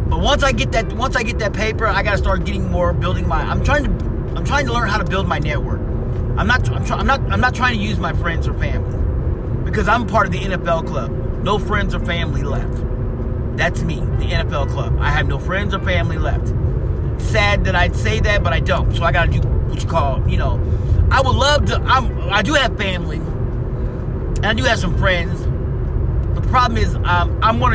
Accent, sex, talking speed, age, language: American, male, 230 wpm, 30-49, English